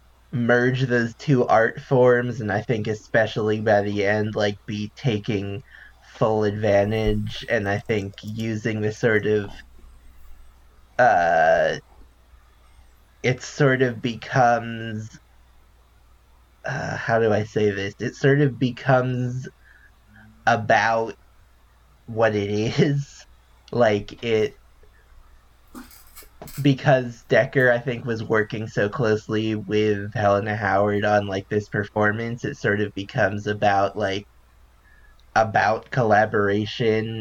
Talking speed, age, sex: 110 wpm, 20-39, male